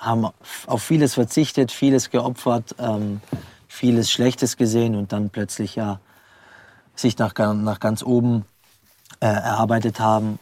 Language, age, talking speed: German, 20-39, 125 wpm